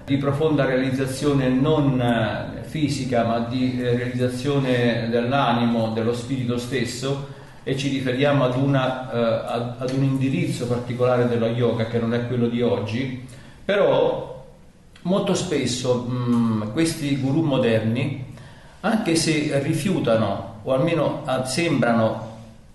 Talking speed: 105 wpm